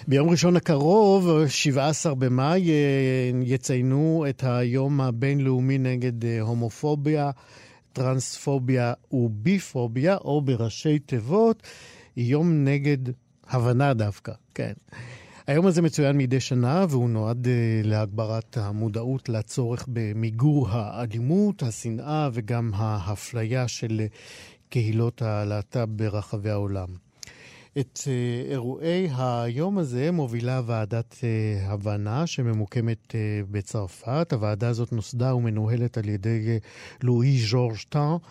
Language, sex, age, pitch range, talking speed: Hebrew, male, 50-69, 115-140 Hz, 95 wpm